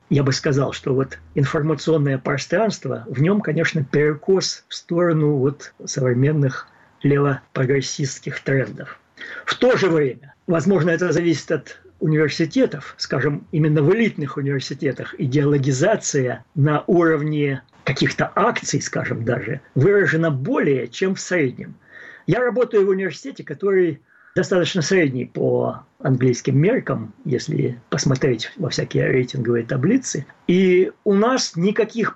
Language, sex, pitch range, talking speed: Russian, male, 135-175 Hz, 115 wpm